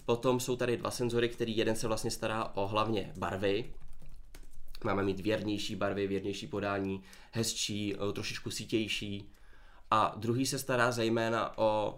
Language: Czech